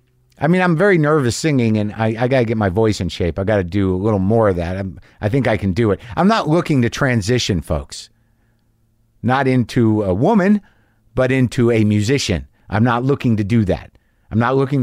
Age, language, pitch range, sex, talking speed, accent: 50-69, English, 100-135 Hz, male, 215 wpm, American